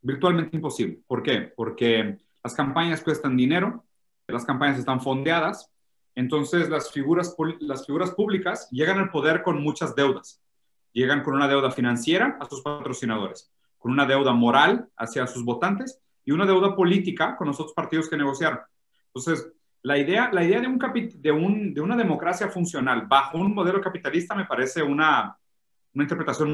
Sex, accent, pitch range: male, Mexican, 135-175 Hz